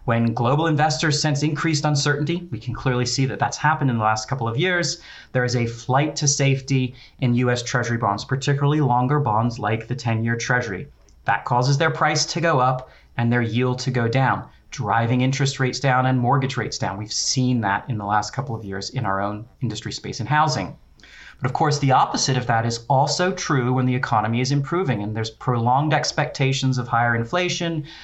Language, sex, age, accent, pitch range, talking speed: English, male, 30-49, American, 115-140 Hz, 205 wpm